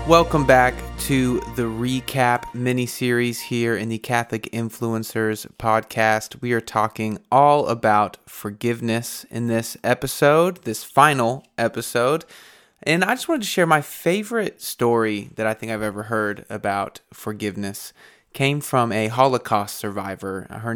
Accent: American